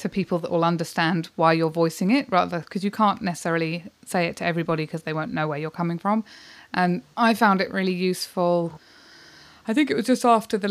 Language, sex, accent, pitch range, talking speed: English, female, British, 160-190 Hz, 220 wpm